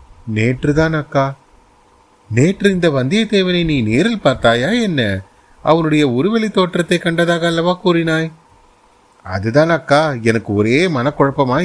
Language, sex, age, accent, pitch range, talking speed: Tamil, male, 30-49, native, 110-145 Hz, 105 wpm